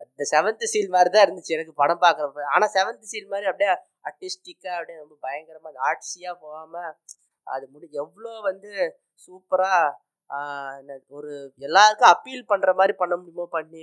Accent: native